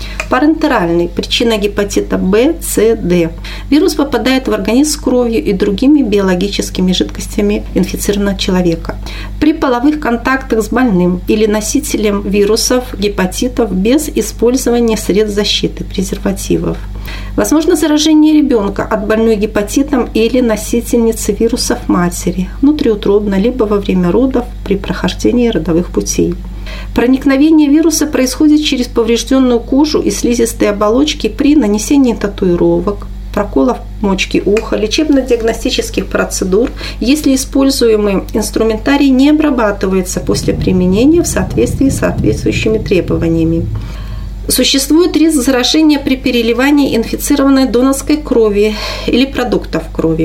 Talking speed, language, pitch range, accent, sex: 110 wpm, Russian, 200-270 Hz, native, female